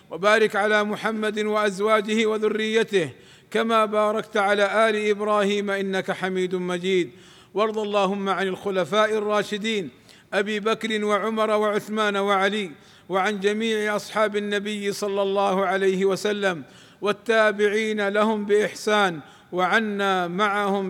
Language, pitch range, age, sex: Arabic, 195-215 Hz, 50-69, male